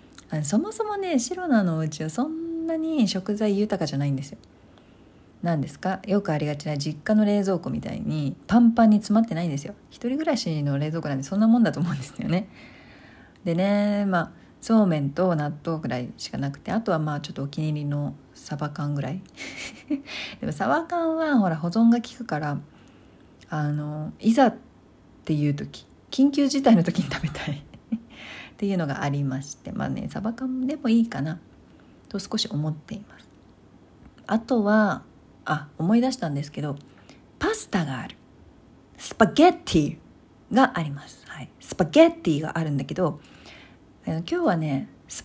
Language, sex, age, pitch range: Japanese, female, 40-59, 150-240 Hz